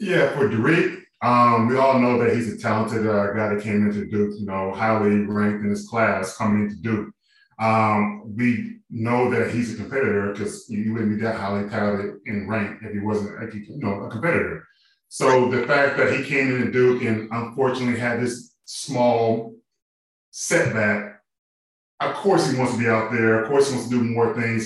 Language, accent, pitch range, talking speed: English, American, 105-125 Hz, 200 wpm